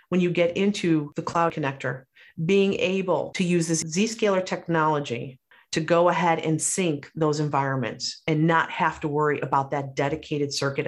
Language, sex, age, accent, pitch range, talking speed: English, female, 40-59, American, 160-215 Hz, 165 wpm